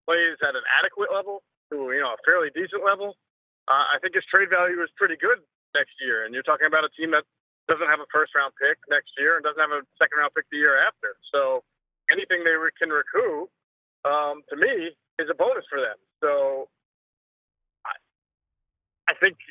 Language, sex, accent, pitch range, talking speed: English, male, American, 155-255 Hz, 195 wpm